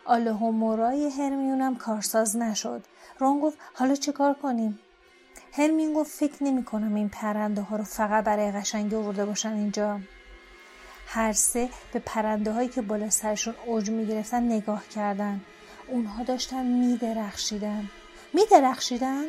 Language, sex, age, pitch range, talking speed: Persian, female, 30-49, 215-275 Hz, 140 wpm